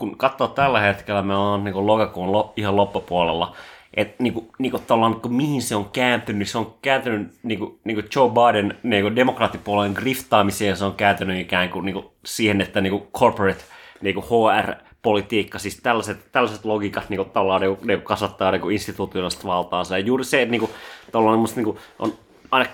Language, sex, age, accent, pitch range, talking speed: Finnish, male, 30-49, native, 100-115 Hz, 170 wpm